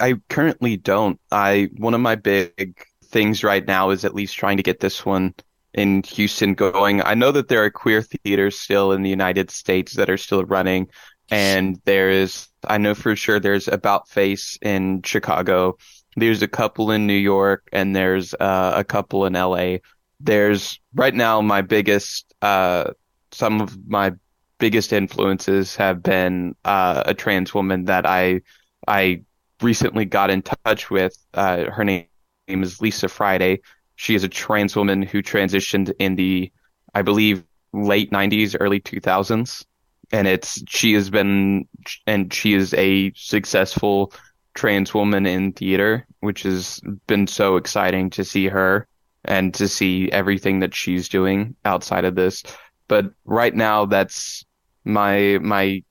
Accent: American